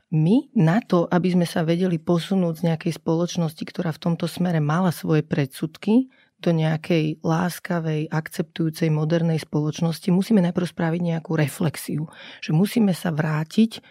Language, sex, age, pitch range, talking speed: Slovak, female, 30-49, 160-185 Hz, 140 wpm